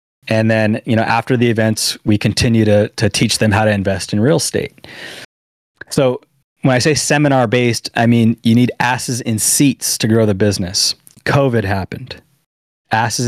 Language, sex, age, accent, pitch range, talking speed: English, male, 20-39, American, 105-135 Hz, 170 wpm